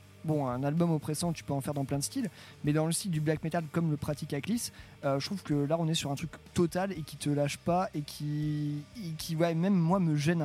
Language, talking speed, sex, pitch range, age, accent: French, 275 wpm, male, 145-165 Hz, 20-39, French